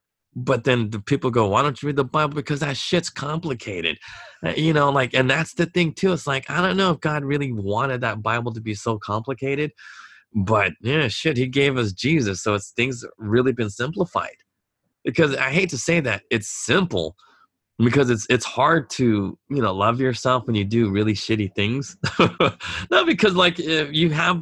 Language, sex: English, male